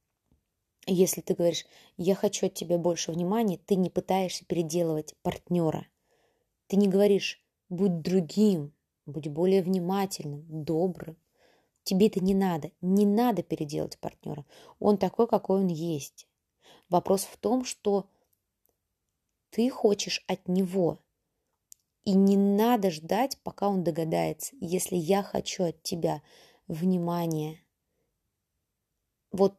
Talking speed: 120 wpm